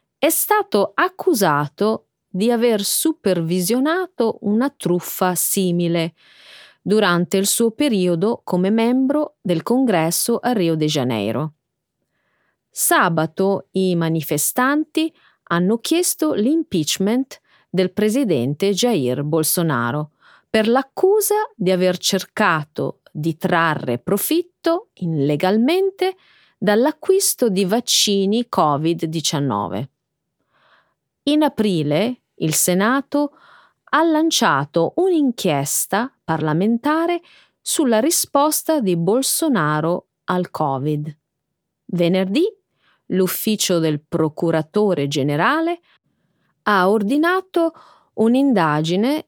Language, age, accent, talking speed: Italian, 30-49, native, 80 wpm